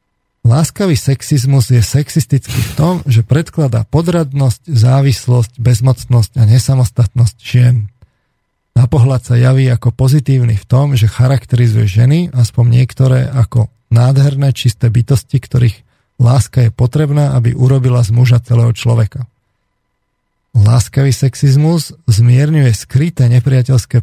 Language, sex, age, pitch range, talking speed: Slovak, male, 40-59, 120-135 Hz, 110 wpm